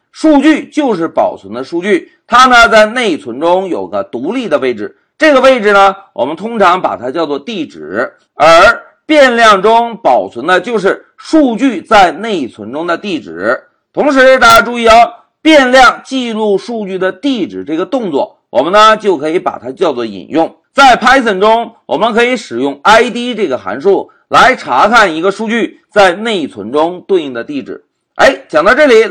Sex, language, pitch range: male, Chinese, 210-285 Hz